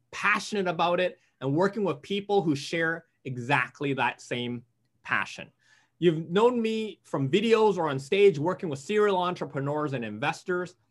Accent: American